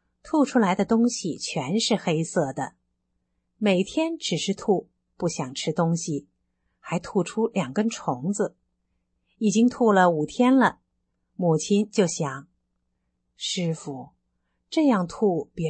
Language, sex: Chinese, female